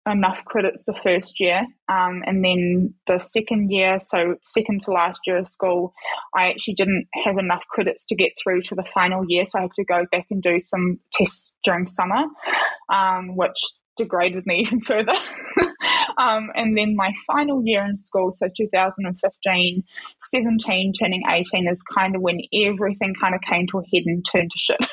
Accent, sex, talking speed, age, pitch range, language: Australian, female, 185 wpm, 10-29, 180-205 Hz, English